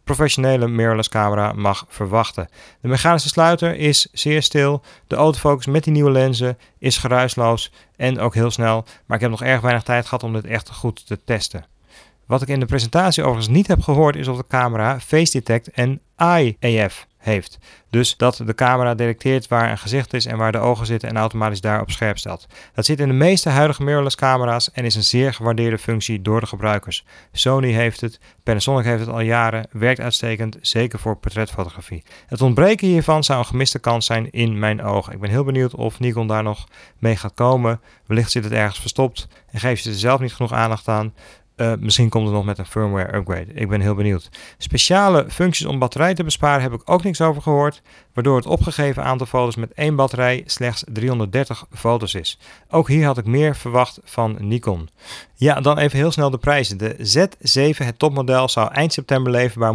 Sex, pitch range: male, 110-135 Hz